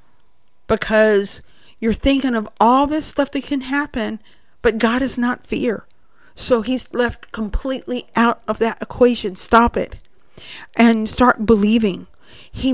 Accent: American